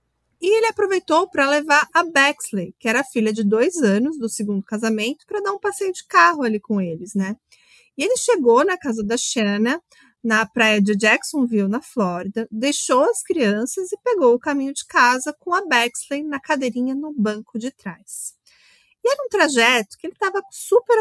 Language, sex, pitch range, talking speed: Portuguese, female, 215-305 Hz, 185 wpm